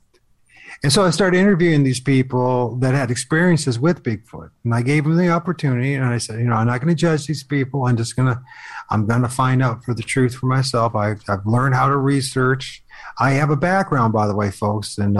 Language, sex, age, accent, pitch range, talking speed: English, male, 50-69, American, 115-135 Hz, 235 wpm